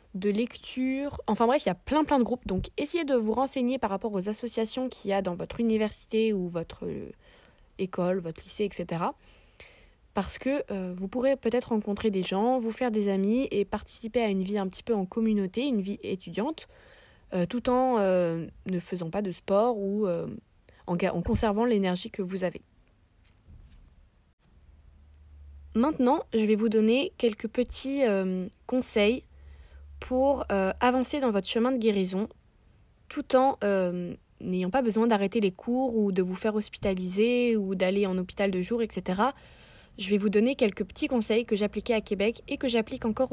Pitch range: 190-240 Hz